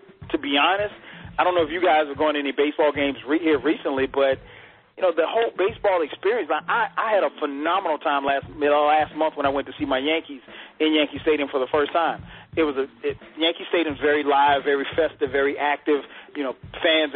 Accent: American